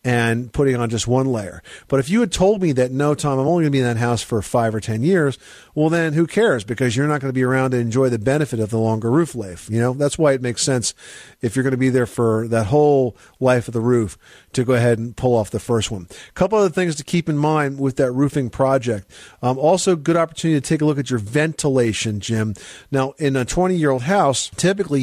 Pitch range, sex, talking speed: 120-145 Hz, male, 255 wpm